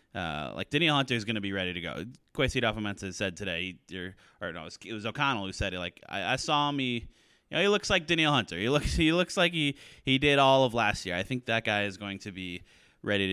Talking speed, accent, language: 250 wpm, American, English